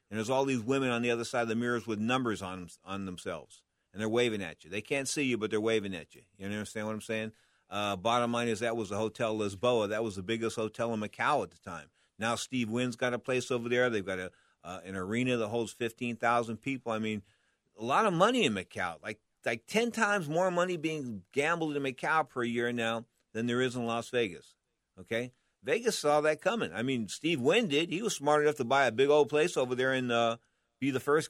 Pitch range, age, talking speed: 110-145 Hz, 50-69, 245 wpm